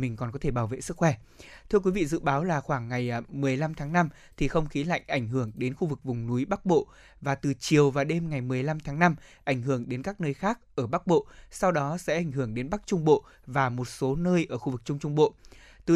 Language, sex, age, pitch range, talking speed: Vietnamese, male, 20-39, 140-175 Hz, 265 wpm